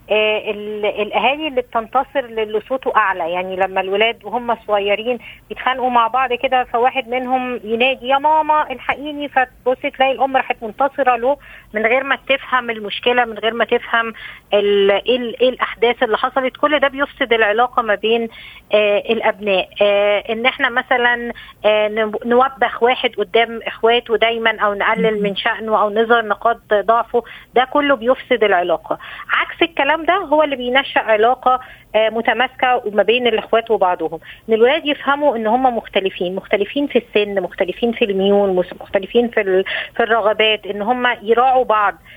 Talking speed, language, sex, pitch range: 145 wpm, Arabic, female, 215-260 Hz